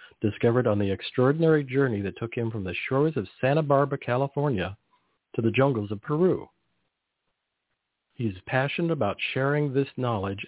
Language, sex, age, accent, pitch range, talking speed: English, male, 50-69, American, 105-135 Hz, 155 wpm